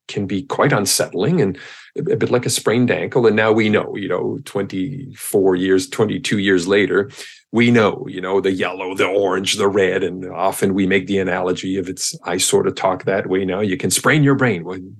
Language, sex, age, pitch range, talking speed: English, male, 40-59, 95-145 Hz, 210 wpm